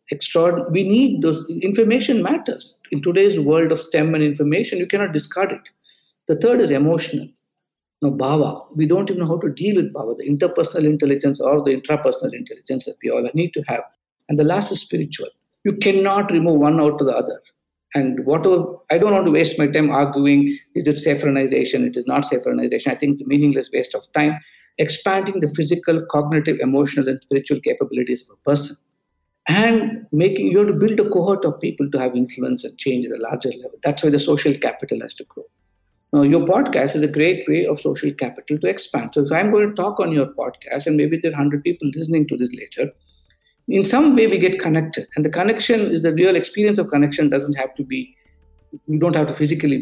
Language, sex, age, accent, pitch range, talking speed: English, male, 50-69, Indian, 145-190 Hz, 210 wpm